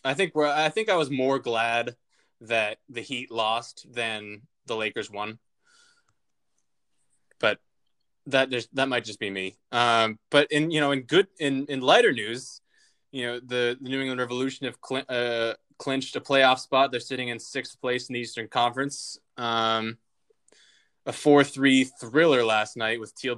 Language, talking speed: English, 170 wpm